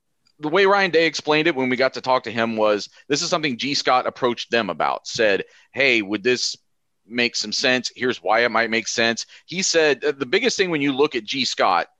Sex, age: male, 30-49